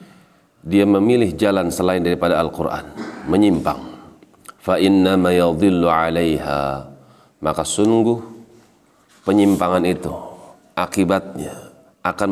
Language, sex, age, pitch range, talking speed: Indonesian, male, 40-59, 80-95 Hz, 85 wpm